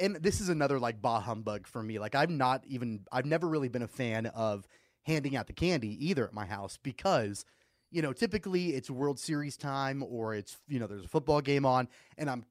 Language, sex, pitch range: English, male, 115-155 Hz